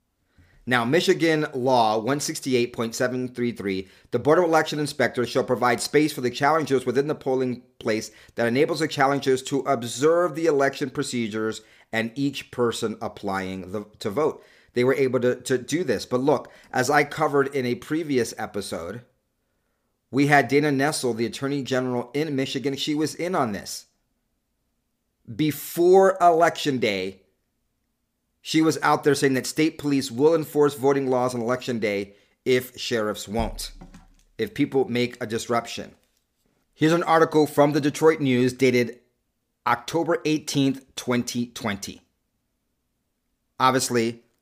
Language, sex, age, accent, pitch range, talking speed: English, male, 30-49, American, 120-150 Hz, 140 wpm